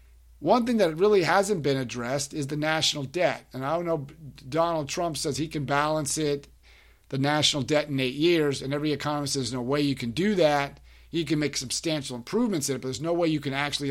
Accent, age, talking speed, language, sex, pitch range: American, 40-59, 230 wpm, English, male, 130-155 Hz